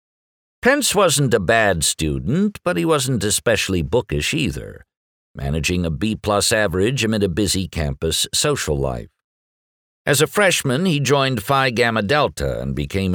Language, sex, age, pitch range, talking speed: English, male, 60-79, 80-120 Hz, 140 wpm